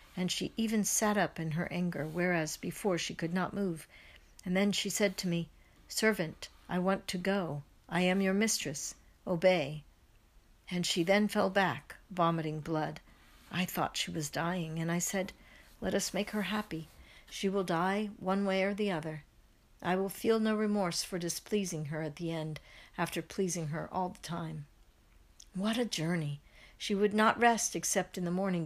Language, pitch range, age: English, 165-200 Hz, 60-79